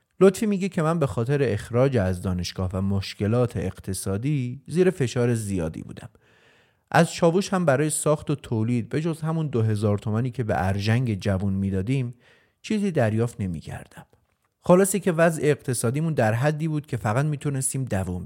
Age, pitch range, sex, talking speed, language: 30-49, 105-150 Hz, male, 155 wpm, Persian